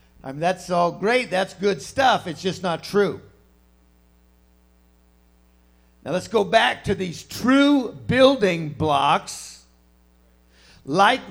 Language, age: English, 60-79